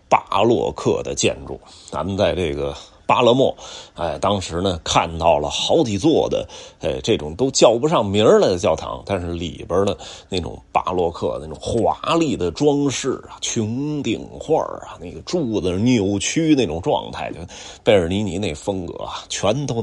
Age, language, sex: 30-49, Chinese, male